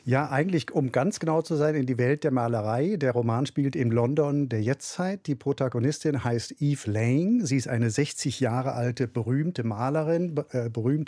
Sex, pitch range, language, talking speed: male, 125-155 Hz, German, 180 wpm